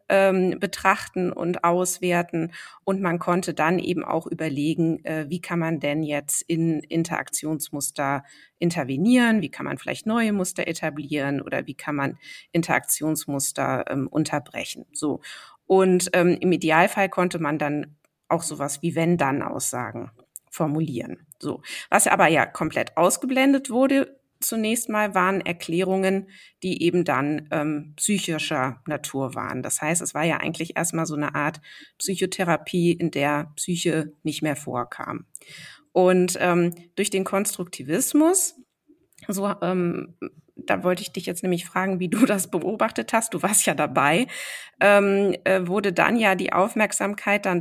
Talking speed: 135 wpm